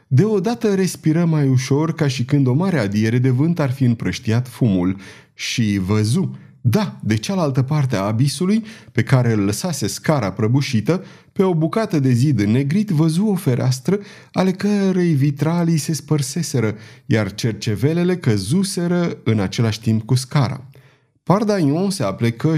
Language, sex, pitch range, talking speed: Romanian, male, 115-155 Hz, 150 wpm